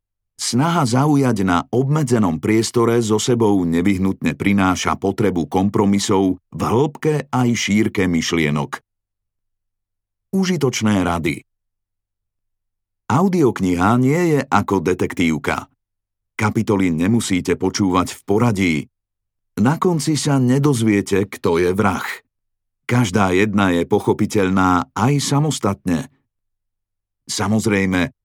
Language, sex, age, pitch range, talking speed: Slovak, male, 50-69, 95-120 Hz, 90 wpm